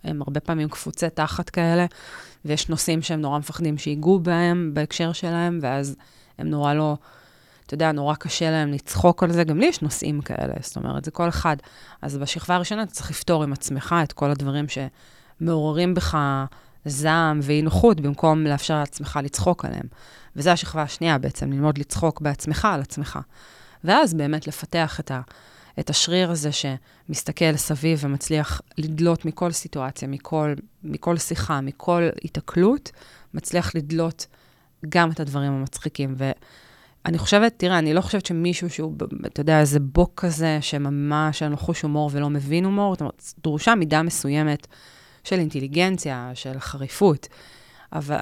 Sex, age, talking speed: female, 20-39, 150 wpm